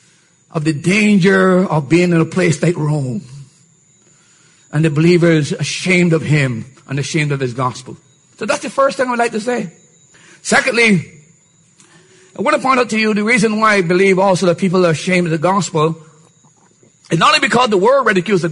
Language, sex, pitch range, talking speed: English, male, 165-230 Hz, 200 wpm